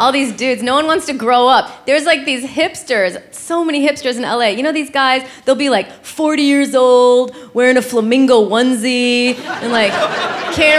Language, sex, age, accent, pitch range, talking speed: English, female, 20-39, American, 250-330 Hz, 195 wpm